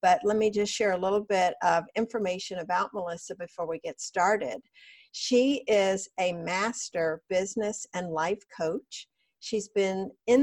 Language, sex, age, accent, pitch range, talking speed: English, female, 50-69, American, 175-225 Hz, 155 wpm